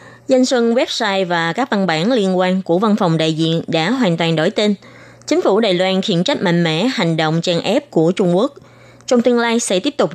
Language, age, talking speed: Vietnamese, 20-39, 235 wpm